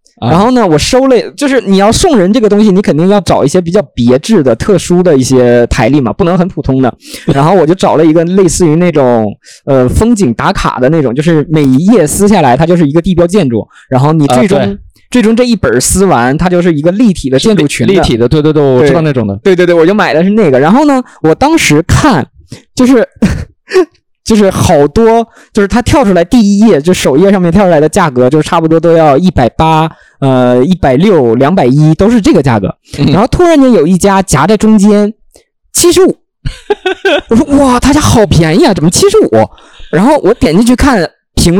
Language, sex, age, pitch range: Chinese, male, 20-39, 155-230 Hz